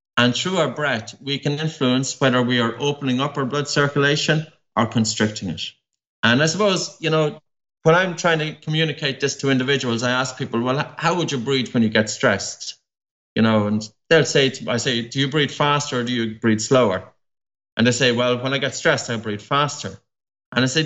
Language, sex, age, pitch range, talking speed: English, male, 30-49, 120-155 Hz, 210 wpm